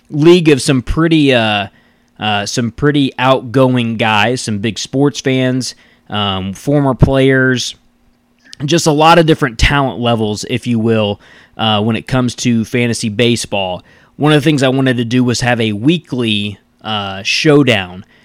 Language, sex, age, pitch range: English, male, 20-39, 110-135 Hz